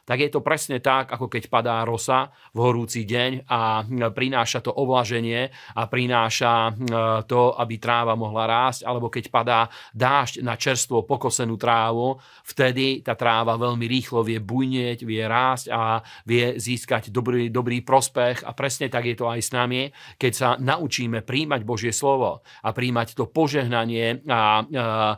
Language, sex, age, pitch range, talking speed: Slovak, male, 40-59, 115-130 Hz, 155 wpm